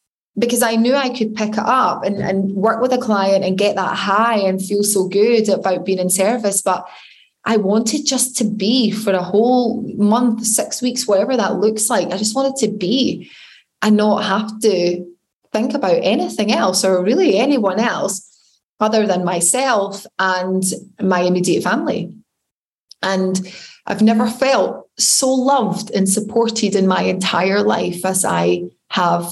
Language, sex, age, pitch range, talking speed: English, female, 20-39, 185-220 Hz, 165 wpm